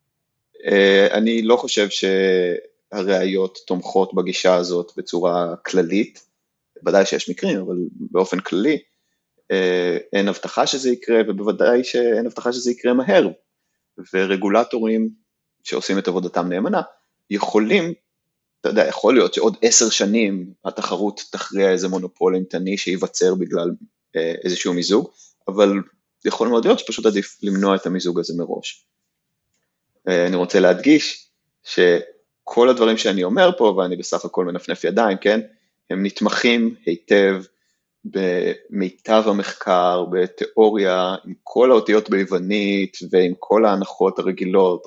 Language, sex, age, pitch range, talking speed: Hebrew, male, 30-49, 95-115 Hz, 115 wpm